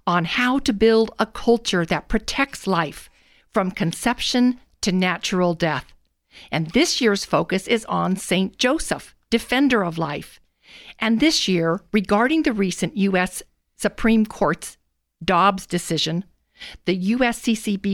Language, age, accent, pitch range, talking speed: English, 50-69, American, 180-235 Hz, 125 wpm